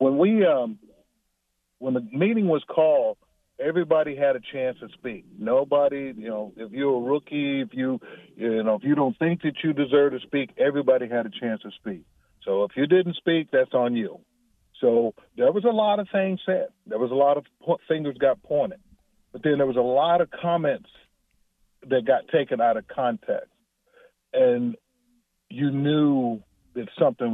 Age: 50-69